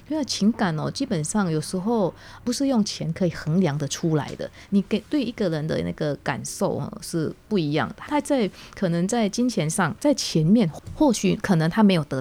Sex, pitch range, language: female, 165-215 Hz, Chinese